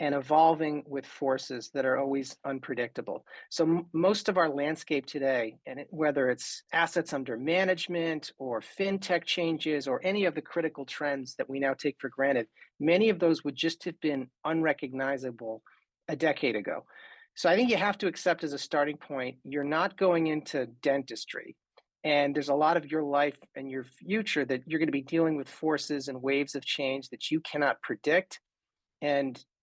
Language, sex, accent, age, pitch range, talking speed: English, male, American, 40-59, 140-170 Hz, 185 wpm